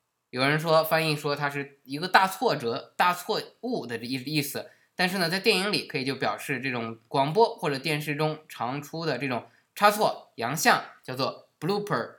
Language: Chinese